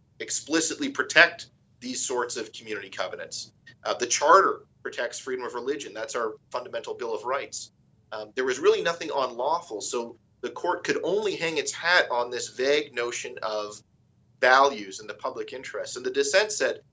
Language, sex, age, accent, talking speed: English, male, 30-49, American, 170 wpm